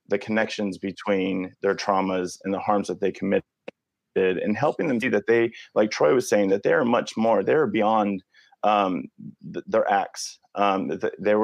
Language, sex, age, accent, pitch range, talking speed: English, male, 30-49, American, 95-105 Hz, 170 wpm